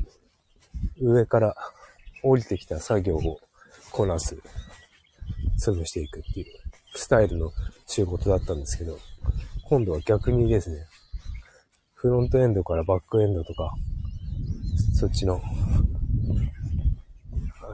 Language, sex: Japanese, male